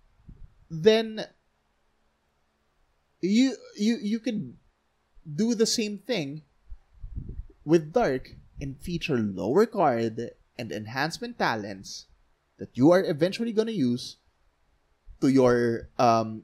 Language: English